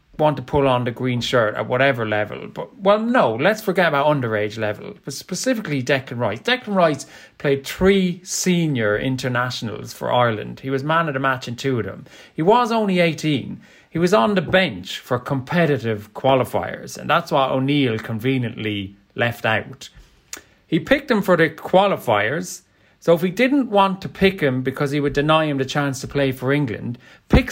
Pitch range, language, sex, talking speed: 125-180 Hz, English, male, 185 wpm